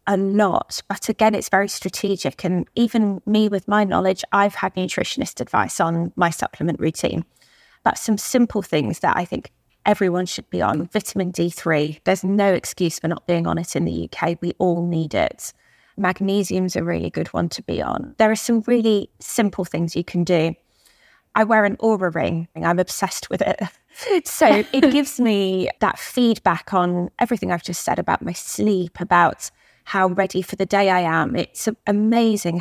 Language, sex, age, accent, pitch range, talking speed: English, female, 20-39, British, 175-210 Hz, 185 wpm